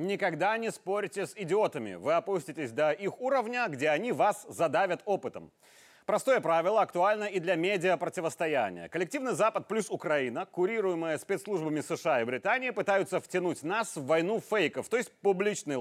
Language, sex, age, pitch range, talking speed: Russian, male, 30-49, 160-220 Hz, 150 wpm